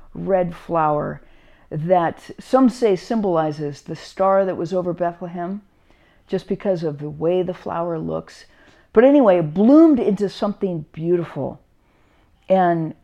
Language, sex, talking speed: English, female, 130 wpm